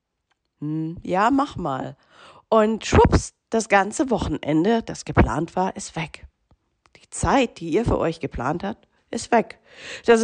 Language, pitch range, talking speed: German, 160-195 Hz, 140 wpm